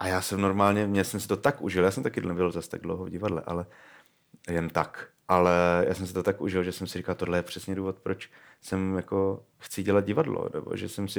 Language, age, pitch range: Czech, 30-49, 90-110 Hz